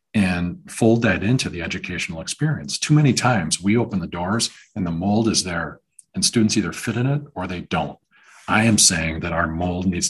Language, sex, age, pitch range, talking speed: English, male, 40-59, 85-110 Hz, 210 wpm